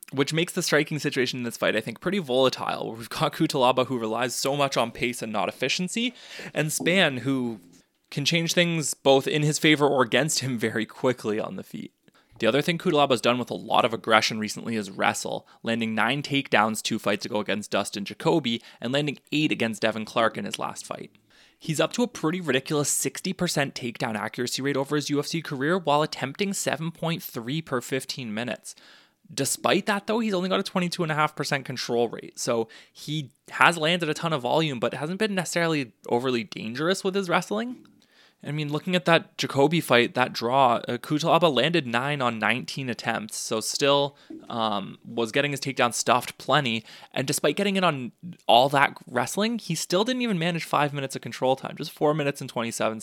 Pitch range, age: 120-170 Hz, 20-39